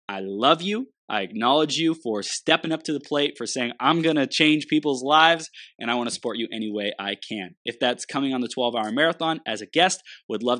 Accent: American